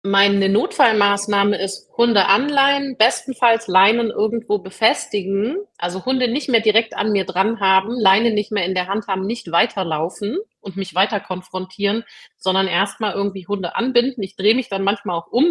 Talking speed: 165 wpm